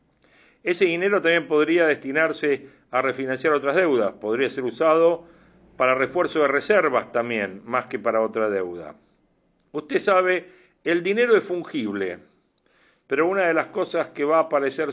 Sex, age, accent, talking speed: male, 50-69, Argentinian, 150 wpm